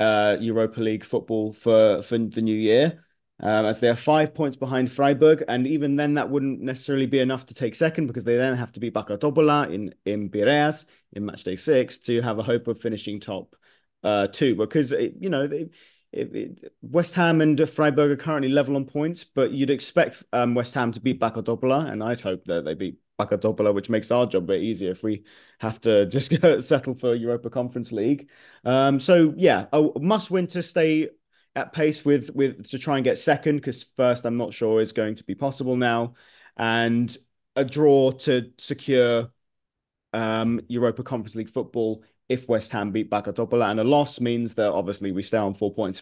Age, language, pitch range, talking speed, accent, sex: 30-49, English, 110-140 Hz, 200 wpm, British, male